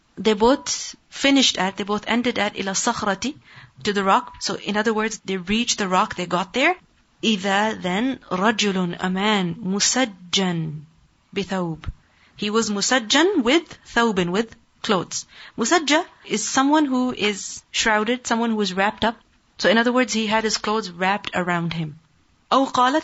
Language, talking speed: English, 155 wpm